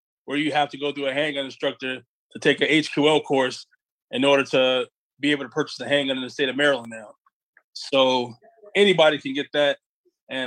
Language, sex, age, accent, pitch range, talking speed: English, male, 20-39, American, 140-170 Hz, 200 wpm